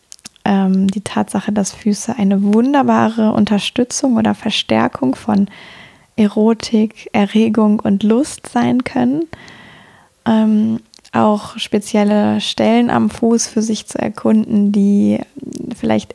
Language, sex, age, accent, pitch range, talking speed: German, female, 20-39, German, 205-225 Hz, 100 wpm